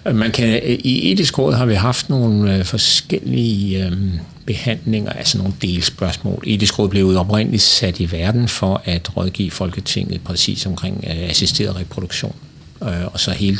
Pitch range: 90-110 Hz